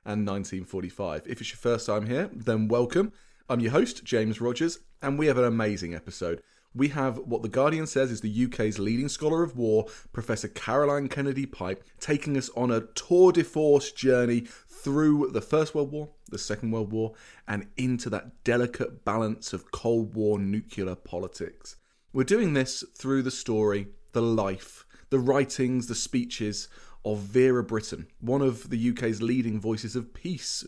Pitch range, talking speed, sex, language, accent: 110-135 Hz, 170 wpm, male, English, British